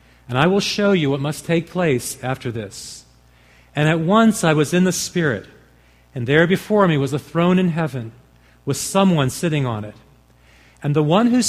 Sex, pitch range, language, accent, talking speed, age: male, 115-185 Hz, English, American, 195 wpm, 40-59